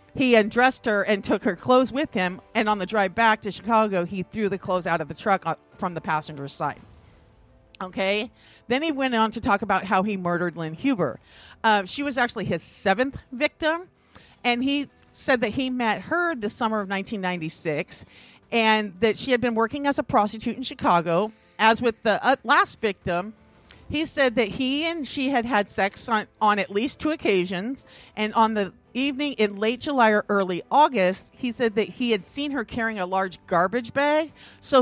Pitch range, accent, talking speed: 185-250 Hz, American, 195 wpm